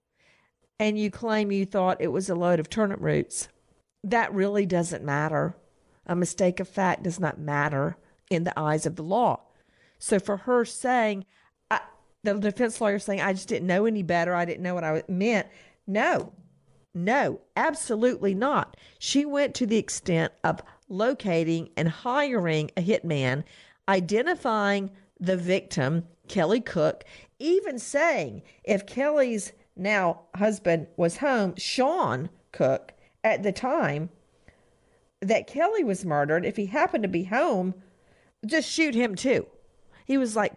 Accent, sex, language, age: American, female, English, 50-69